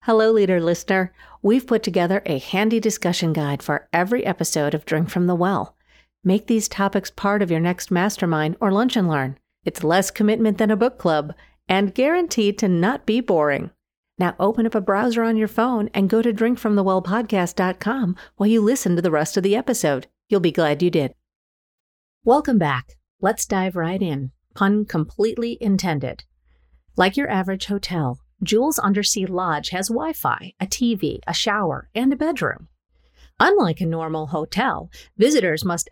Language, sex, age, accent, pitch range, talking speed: English, female, 50-69, American, 165-225 Hz, 165 wpm